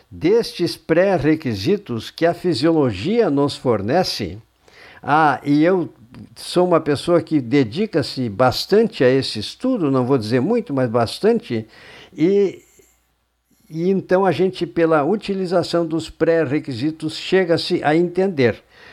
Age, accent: 60-79, Brazilian